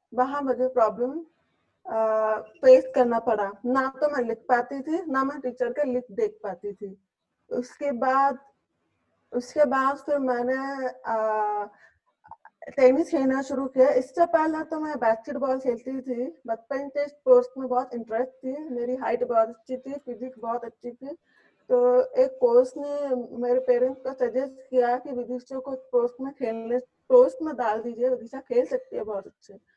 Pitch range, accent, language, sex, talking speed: 245-285 Hz, Indian, English, female, 125 wpm